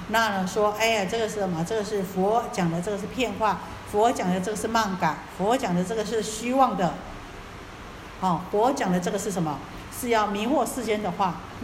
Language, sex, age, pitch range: Chinese, female, 50-69, 150-220 Hz